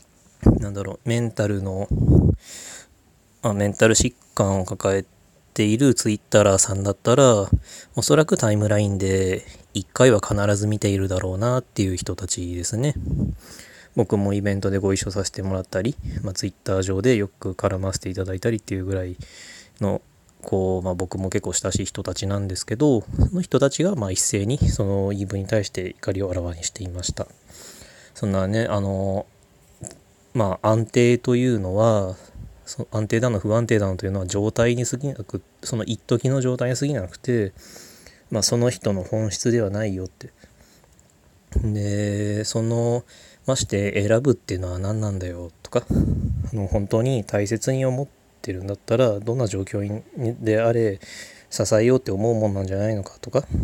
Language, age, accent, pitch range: Japanese, 20-39, native, 95-115 Hz